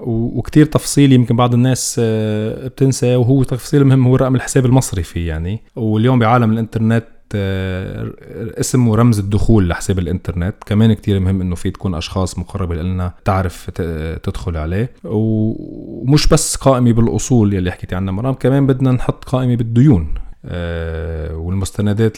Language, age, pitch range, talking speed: Arabic, 20-39, 90-115 Hz, 130 wpm